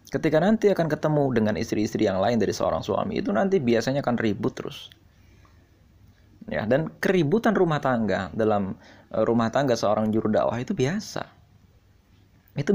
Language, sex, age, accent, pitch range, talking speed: Indonesian, male, 20-39, native, 105-155 Hz, 145 wpm